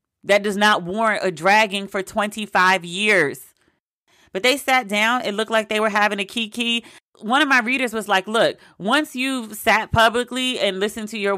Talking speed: 190 wpm